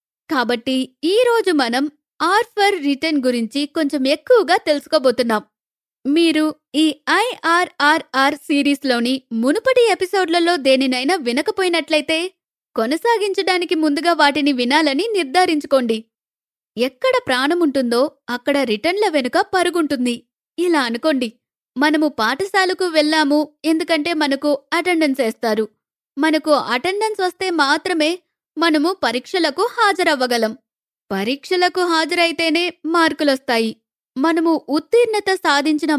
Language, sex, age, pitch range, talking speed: Telugu, female, 20-39, 265-345 Hz, 85 wpm